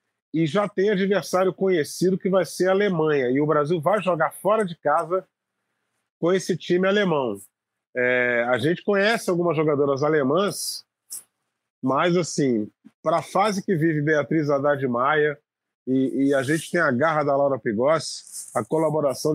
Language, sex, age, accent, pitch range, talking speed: Portuguese, male, 40-59, Brazilian, 140-175 Hz, 155 wpm